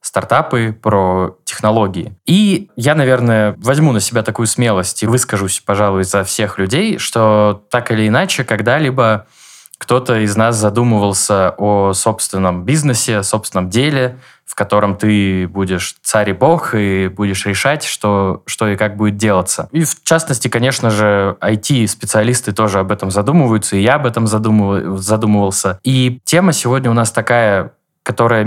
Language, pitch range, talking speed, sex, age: Russian, 105-125 Hz, 150 wpm, male, 20-39